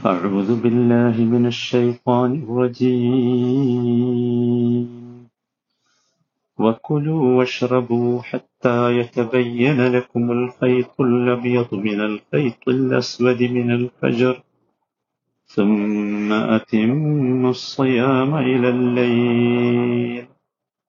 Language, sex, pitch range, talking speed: Malayalam, male, 110-125 Hz, 65 wpm